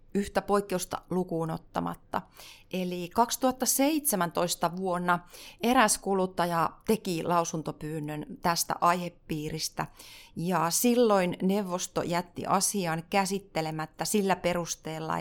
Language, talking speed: Finnish, 85 wpm